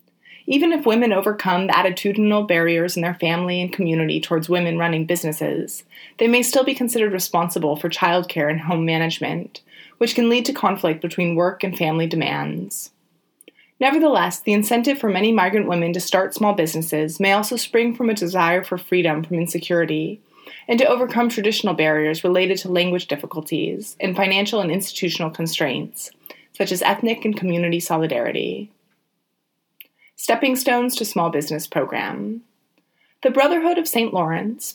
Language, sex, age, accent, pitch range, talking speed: English, female, 20-39, American, 170-220 Hz, 155 wpm